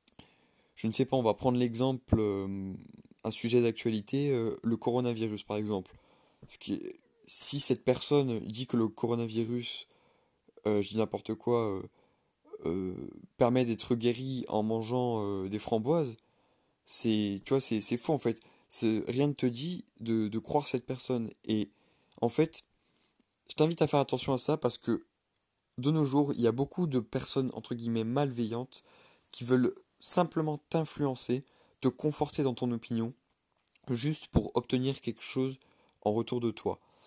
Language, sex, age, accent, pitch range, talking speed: French, male, 20-39, French, 110-135 Hz, 150 wpm